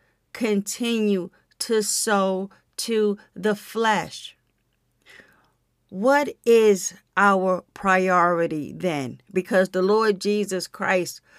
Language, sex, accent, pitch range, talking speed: English, female, American, 175-205 Hz, 85 wpm